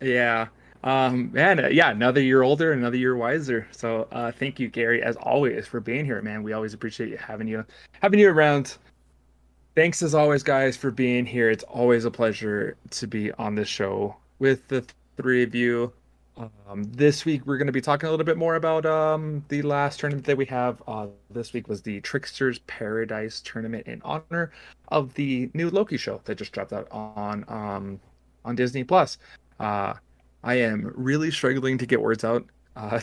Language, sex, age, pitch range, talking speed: English, male, 20-39, 115-145 Hz, 195 wpm